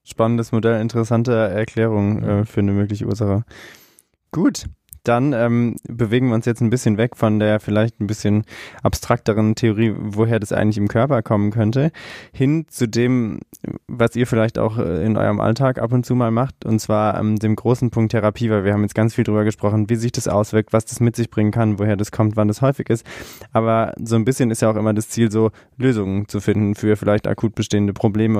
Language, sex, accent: German, male, German